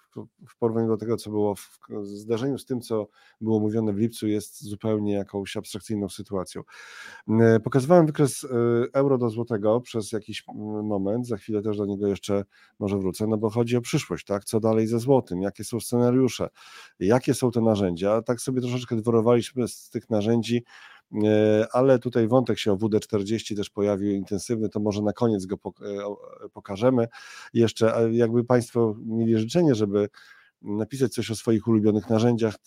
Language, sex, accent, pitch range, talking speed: Polish, male, native, 100-115 Hz, 160 wpm